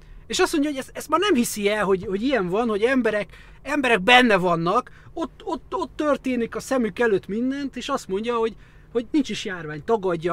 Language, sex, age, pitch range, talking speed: Hungarian, male, 30-49, 165-240 Hz, 200 wpm